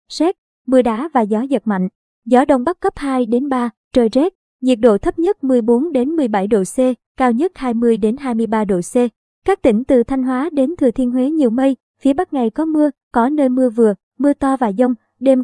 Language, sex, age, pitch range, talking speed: Vietnamese, male, 20-39, 235-280 Hz, 220 wpm